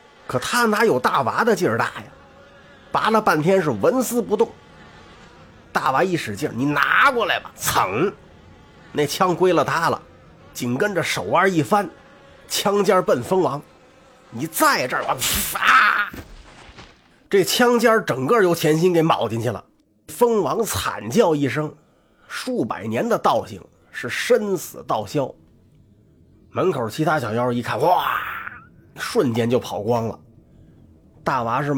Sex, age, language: male, 30-49, Chinese